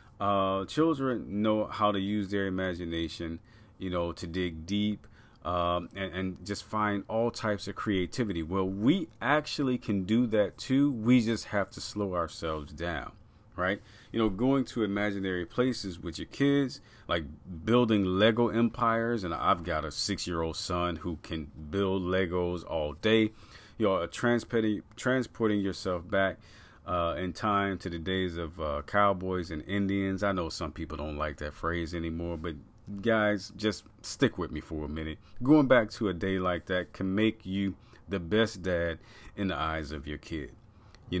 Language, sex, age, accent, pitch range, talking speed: English, male, 40-59, American, 90-110 Hz, 170 wpm